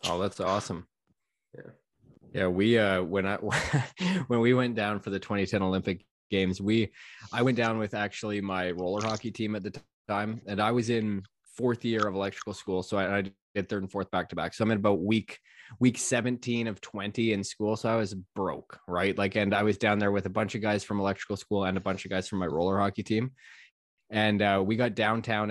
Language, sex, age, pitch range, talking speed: English, male, 20-39, 95-110 Hz, 225 wpm